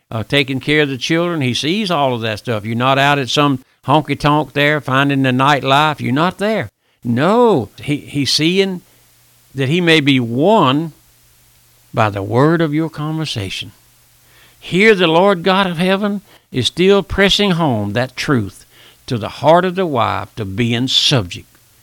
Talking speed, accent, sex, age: 170 wpm, American, male, 60-79